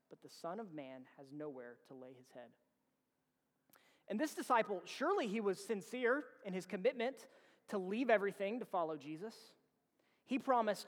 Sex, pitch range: male, 180-250 Hz